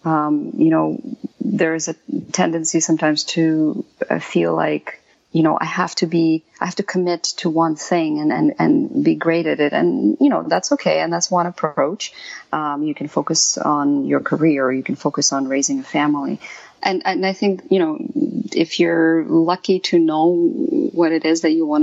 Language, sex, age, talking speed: English, female, 30-49, 195 wpm